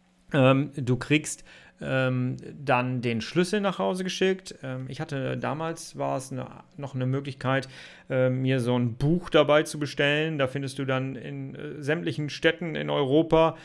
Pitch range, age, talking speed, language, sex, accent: 125-150 Hz, 40-59, 165 wpm, German, male, German